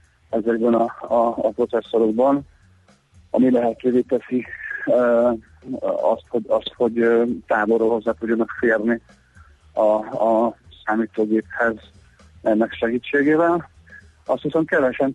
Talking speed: 100 wpm